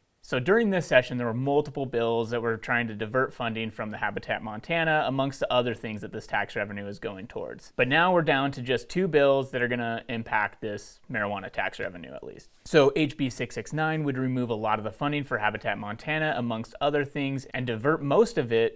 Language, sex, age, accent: English, male, 30-49, American